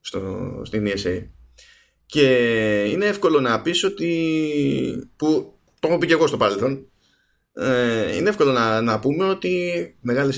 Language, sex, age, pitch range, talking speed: Greek, male, 20-39, 110-150 Hz, 145 wpm